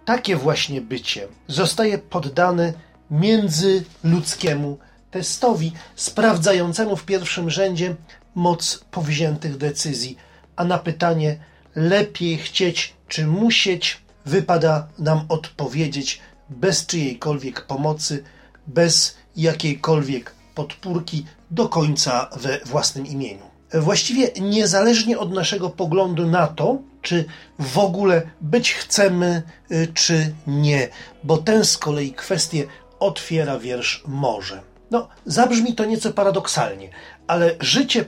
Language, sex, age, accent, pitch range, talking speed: Polish, male, 40-59, native, 150-190 Hz, 100 wpm